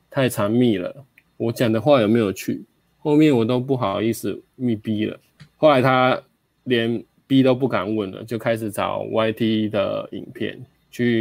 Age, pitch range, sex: 20-39, 110-130 Hz, male